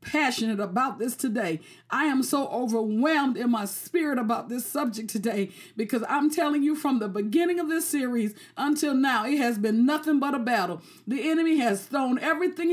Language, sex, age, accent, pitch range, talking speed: English, female, 50-69, American, 235-310 Hz, 185 wpm